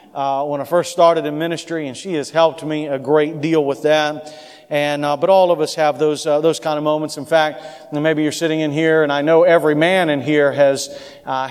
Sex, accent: male, American